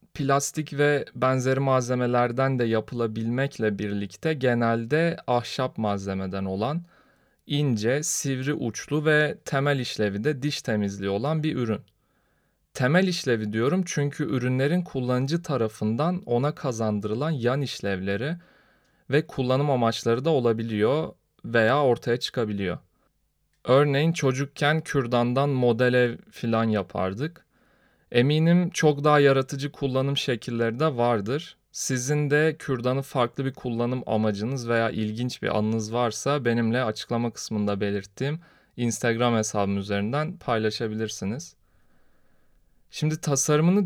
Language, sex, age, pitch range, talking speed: Turkish, male, 40-59, 115-150 Hz, 105 wpm